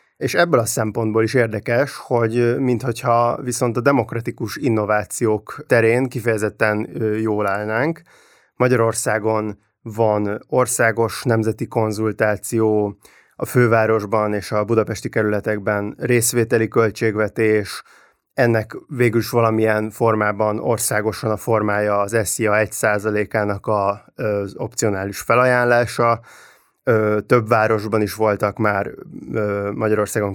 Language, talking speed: Hungarian, 95 wpm